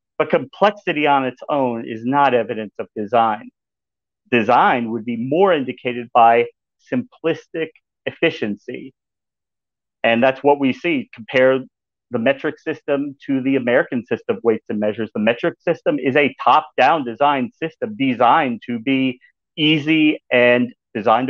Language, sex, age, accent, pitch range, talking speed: English, male, 40-59, American, 120-165 Hz, 140 wpm